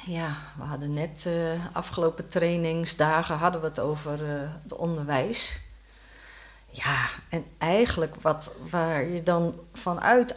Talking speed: 135 wpm